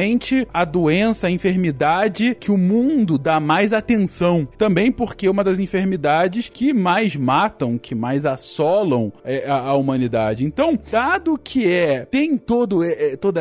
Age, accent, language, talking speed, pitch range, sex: 20-39, Brazilian, Portuguese, 150 wpm, 180-275 Hz, male